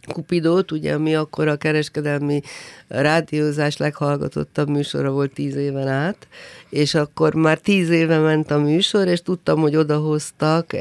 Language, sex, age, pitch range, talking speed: Hungarian, female, 50-69, 135-170 Hz, 140 wpm